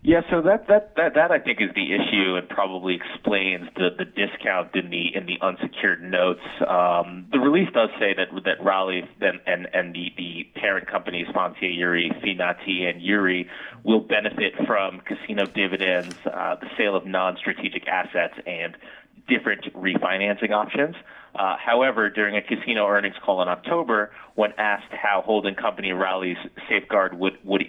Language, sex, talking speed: English, male, 165 wpm